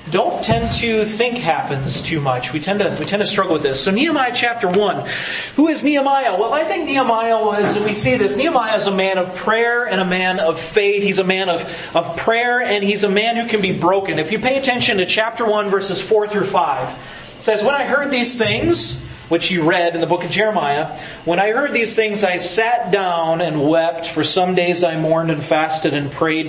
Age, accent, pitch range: 30-49, American, 160-220 Hz